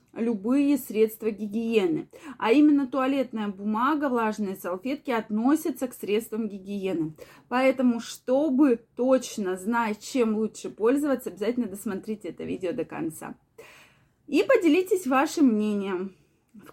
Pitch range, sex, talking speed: 215-285 Hz, female, 110 wpm